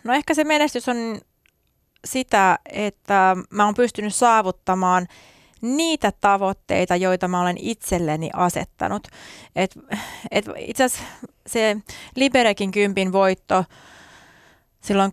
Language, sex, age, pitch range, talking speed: Finnish, female, 30-49, 180-205 Hz, 105 wpm